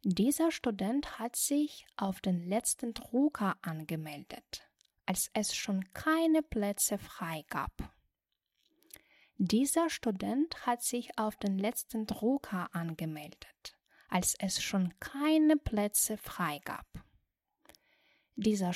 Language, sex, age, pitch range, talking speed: Russian, female, 10-29, 185-275 Hz, 105 wpm